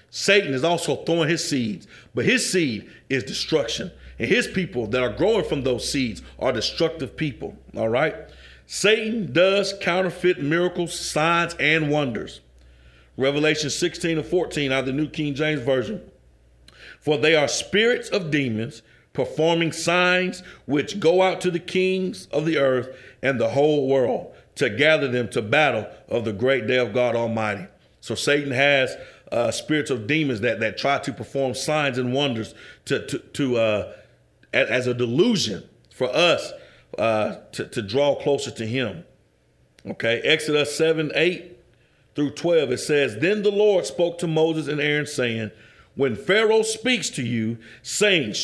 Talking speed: 160 wpm